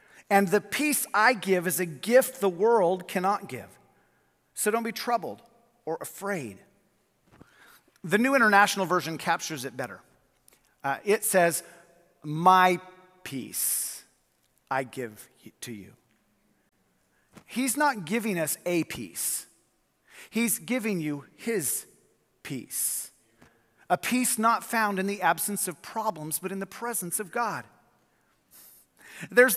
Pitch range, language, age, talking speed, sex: 175-245 Hz, English, 40-59, 125 wpm, male